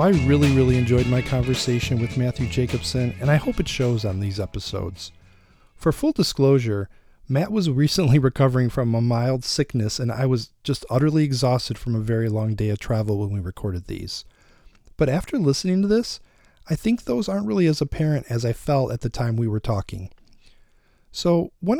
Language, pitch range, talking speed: English, 110-145 Hz, 185 wpm